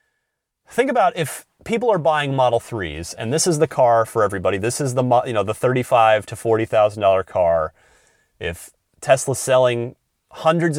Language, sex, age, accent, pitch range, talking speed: English, male, 30-49, American, 120-165 Hz, 170 wpm